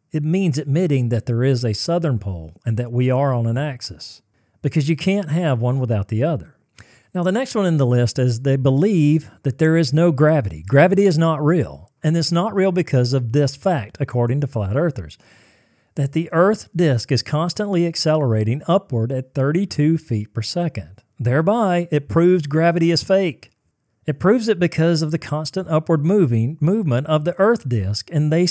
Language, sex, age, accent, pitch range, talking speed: English, male, 40-59, American, 120-180 Hz, 190 wpm